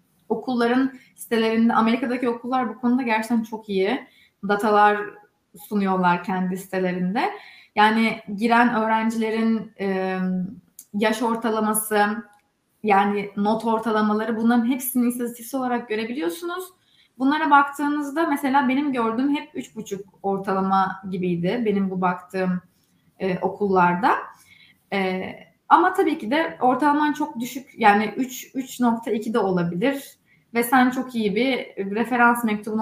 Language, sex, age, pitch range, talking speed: Turkish, female, 20-39, 195-250 Hz, 110 wpm